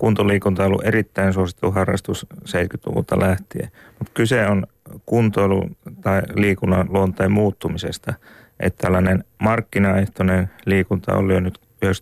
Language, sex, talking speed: Finnish, male, 120 wpm